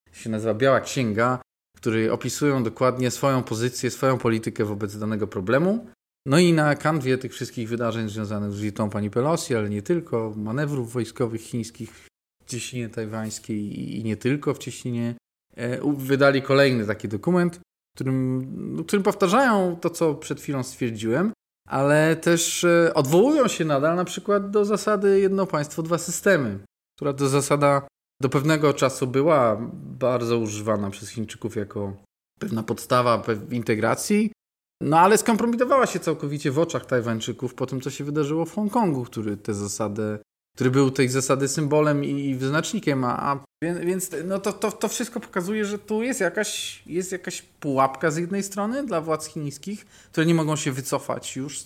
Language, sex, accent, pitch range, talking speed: Polish, male, native, 115-170 Hz, 155 wpm